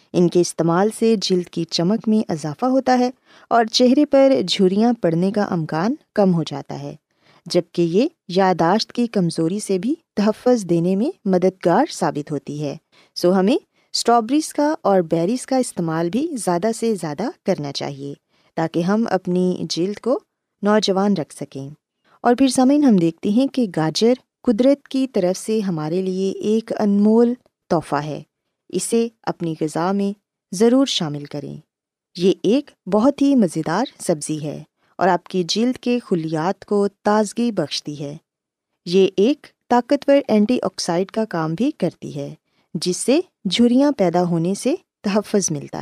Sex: female